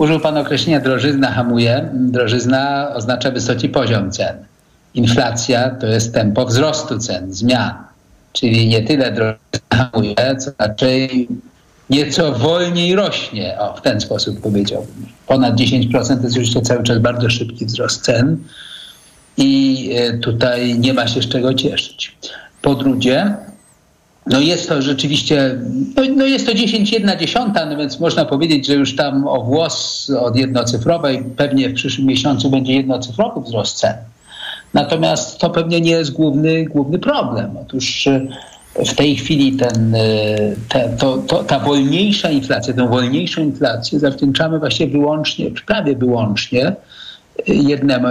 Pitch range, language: 120-150 Hz, Polish